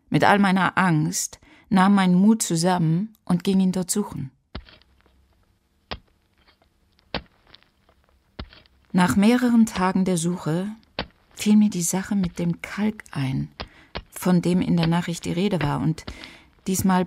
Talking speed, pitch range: 125 wpm, 160-200 Hz